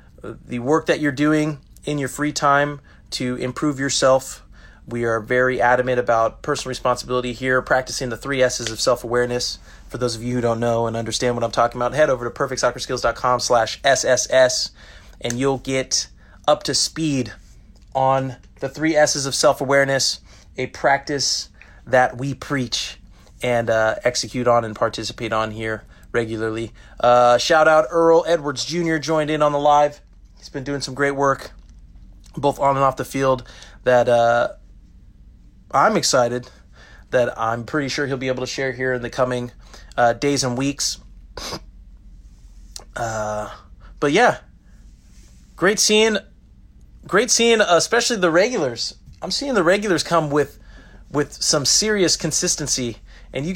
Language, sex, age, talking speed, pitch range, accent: English, male, 30-49, 155 wpm, 120-150 Hz, American